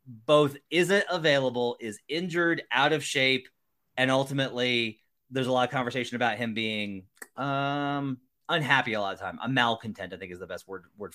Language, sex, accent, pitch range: English, male, American, 110-135 Hz